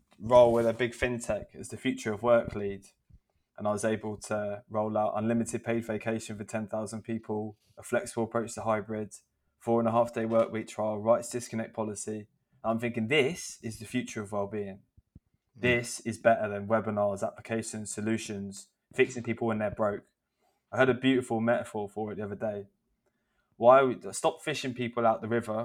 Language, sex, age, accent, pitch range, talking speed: English, male, 20-39, British, 105-115 Hz, 185 wpm